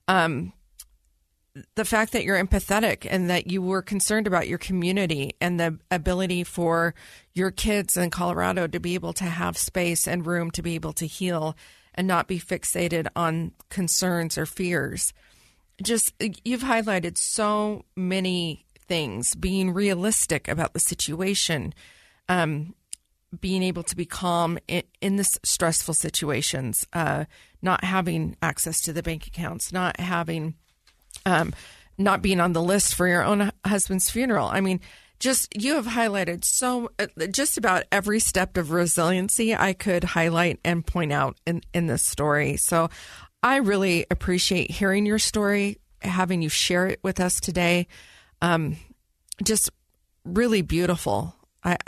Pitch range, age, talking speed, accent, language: 165-195 Hz, 40-59, 150 wpm, American, English